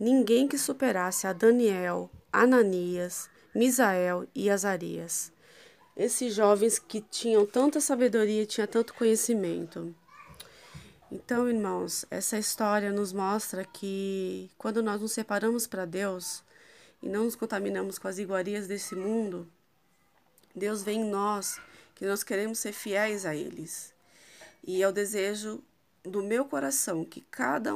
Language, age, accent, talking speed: Portuguese, 20-39, Brazilian, 130 wpm